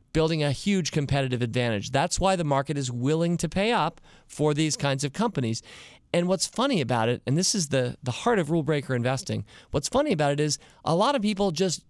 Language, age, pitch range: English, 40-59, 130-180 Hz